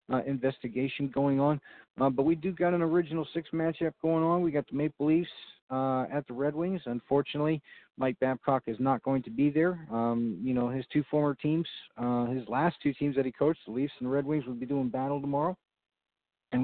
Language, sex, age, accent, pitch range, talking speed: English, male, 40-59, American, 130-150 Hz, 220 wpm